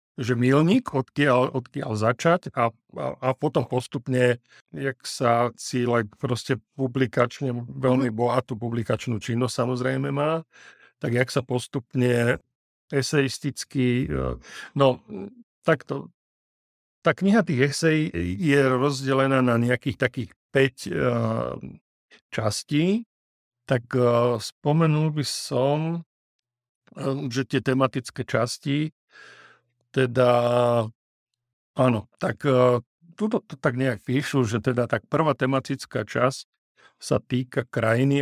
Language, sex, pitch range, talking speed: Slovak, male, 120-140 Hz, 100 wpm